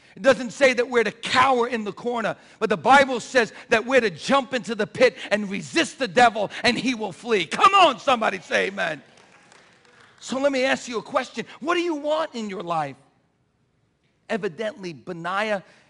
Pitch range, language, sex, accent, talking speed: 165-215 Hz, English, male, American, 190 wpm